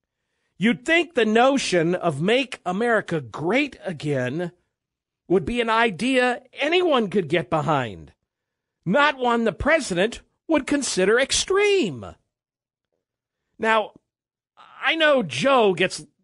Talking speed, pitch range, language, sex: 105 wpm, 175-255 Hz, English, male